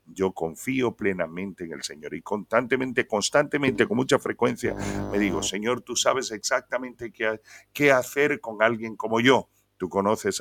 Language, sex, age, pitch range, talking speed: Spanish, male, 50-69, 100-125 Hz, 155 wpm